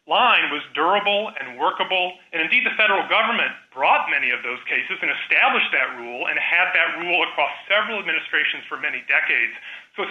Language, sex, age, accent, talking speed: English, male, 30-49, American, 185 wpm